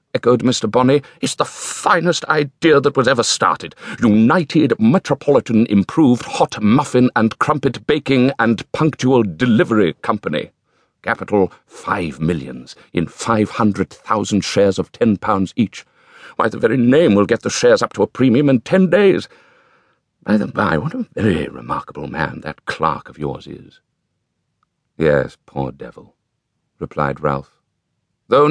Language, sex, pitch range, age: English, male, 85-135 Hz, 60-79